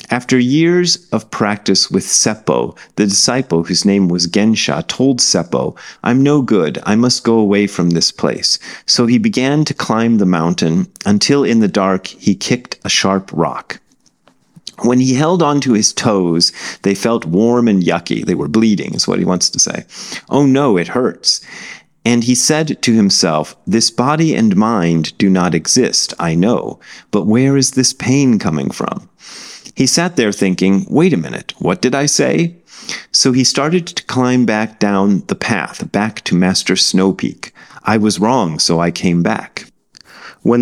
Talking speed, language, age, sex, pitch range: 175 wpm, English, 40-59, male, 95-135 Hz